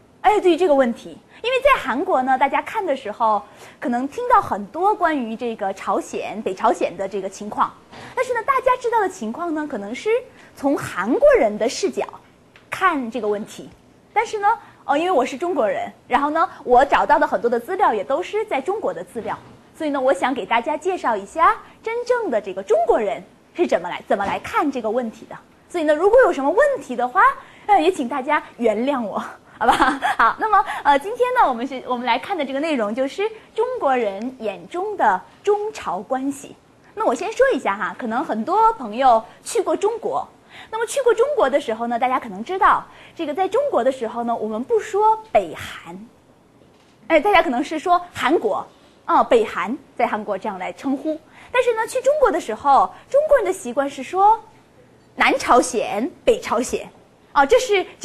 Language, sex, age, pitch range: Korean, female, 20-39, 245-415 Hz